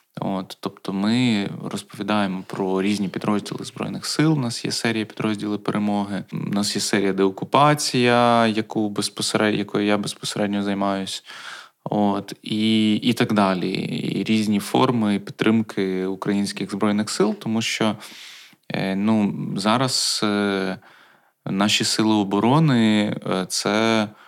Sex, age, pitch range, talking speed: male, 20-39, 100-110 Hz, 100 wpm